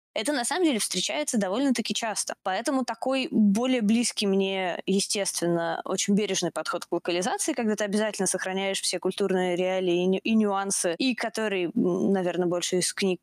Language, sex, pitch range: Russian, female, 185-240 Hz